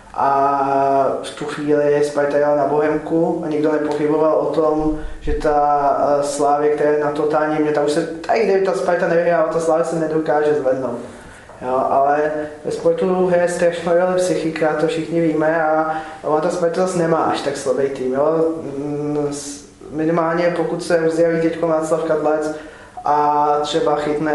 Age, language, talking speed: 20-39, Czech, 165 wpm